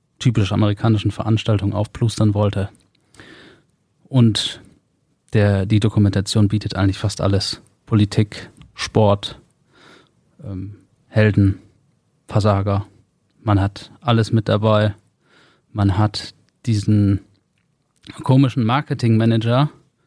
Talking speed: 85 wpm